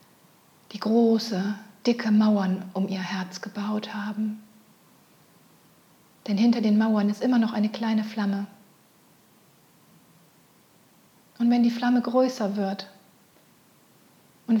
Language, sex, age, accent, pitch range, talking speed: German, female, 40-59, German, 200-225 Hz, 105 wpm